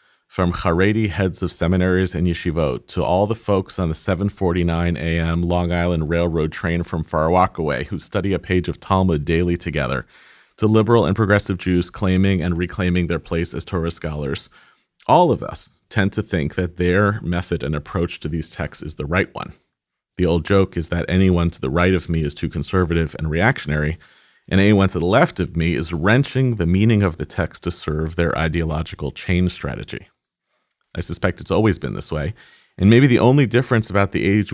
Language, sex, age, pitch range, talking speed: English, male, 40-59, 85-100 Hz, 195 wpm